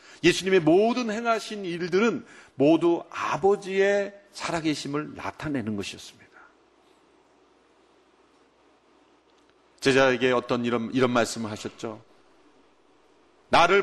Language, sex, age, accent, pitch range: Korean, male, 40-59, native, 130-210 Hz